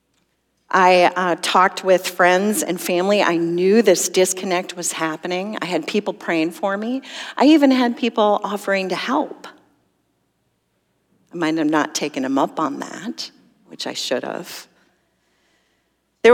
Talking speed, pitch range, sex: 145 wpm, 160-195 Hz, female